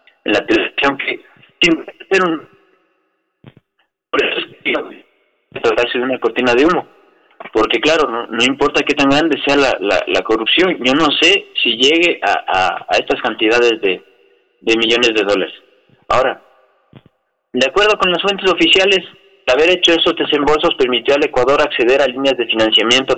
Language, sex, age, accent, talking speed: Spanish, male, 30-49, Mexican, 160 wpm